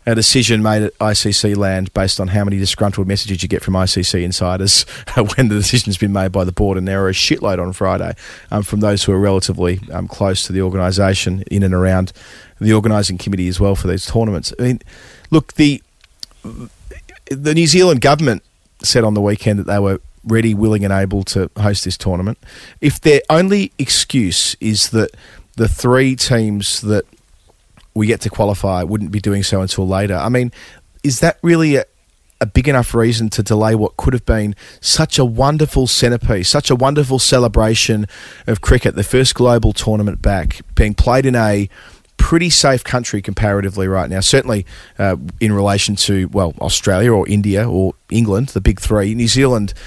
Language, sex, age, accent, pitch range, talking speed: English, male, 30-49, Australian, 95-120 Hz, 185 wpm